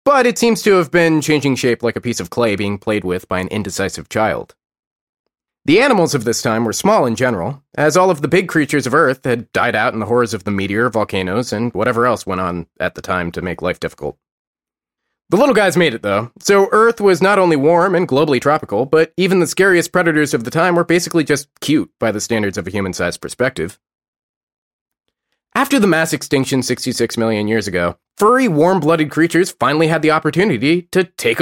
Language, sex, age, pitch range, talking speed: English, male, 30-49, 115-170 Hz, 210 wpm